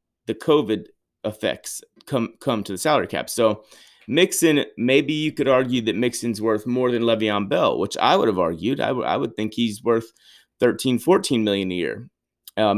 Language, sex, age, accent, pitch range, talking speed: English, male, 30-49, American, 105-130 Hz, 185 wpm